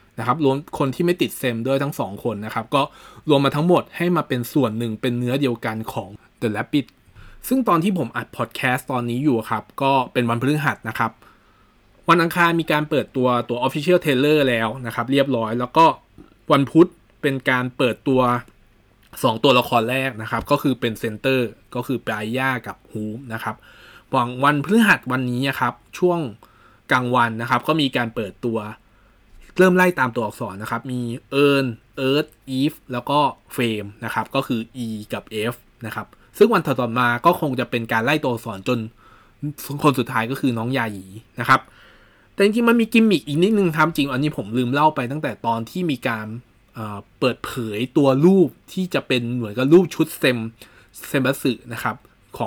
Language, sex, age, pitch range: Thai, male, 20-39, 115-145 Hz